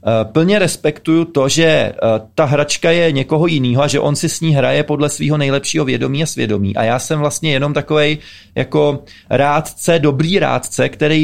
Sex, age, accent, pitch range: male, 30-49, native, 120-150 Hz